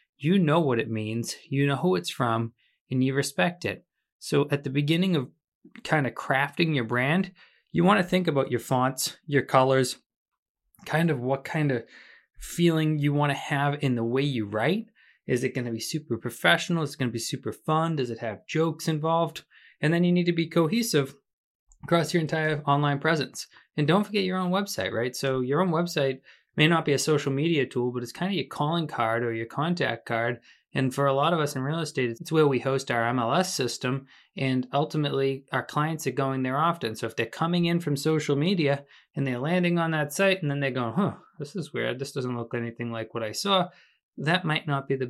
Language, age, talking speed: English, 20-39, 220 wpm